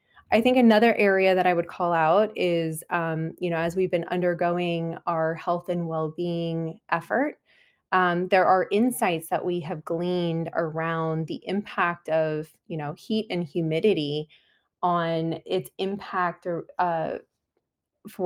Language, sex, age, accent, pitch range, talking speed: English, female, 20-39, American, 160-185 Hz, 140 wpm